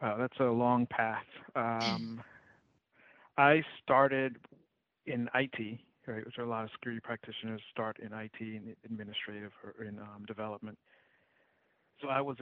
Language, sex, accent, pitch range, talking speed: English, male, American, 110-120 Hz, 145 wpm